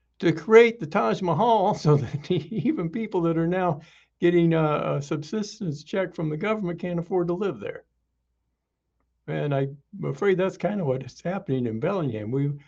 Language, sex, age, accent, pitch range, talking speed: English, male, 60-79, American, 115-170 Hz, 175 wpm